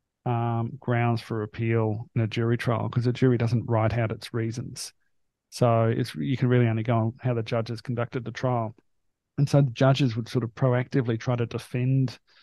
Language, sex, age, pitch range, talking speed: English, male, 40-59, 115-130 Hz, 200 wpm